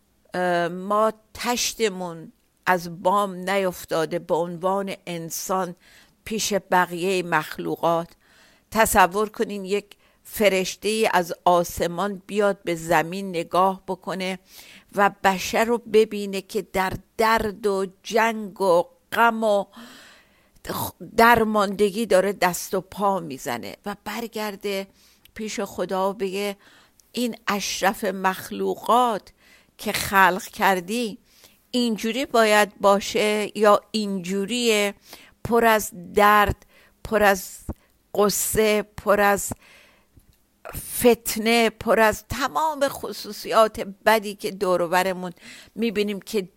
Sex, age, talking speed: female, 50-69, 95 wpm